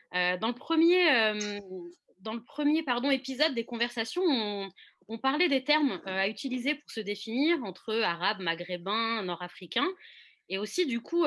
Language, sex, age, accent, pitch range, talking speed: French, female, 20-39, French, 185-260 Hz, 160 wpm